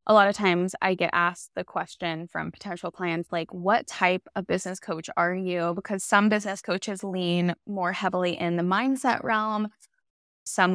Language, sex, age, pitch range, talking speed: English, female, 20-39, 175-200 Hz, 180 wpm